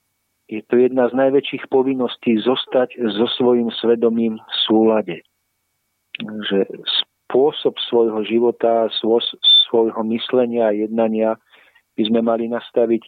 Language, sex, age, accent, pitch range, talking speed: Czech, male, 40-59, native, 110-125 Hz, 110 wpm